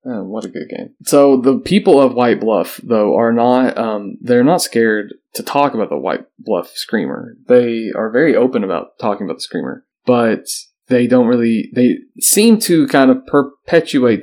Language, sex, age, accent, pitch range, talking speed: English, male, 20-39, American, 115-135 Hz, 175 wpm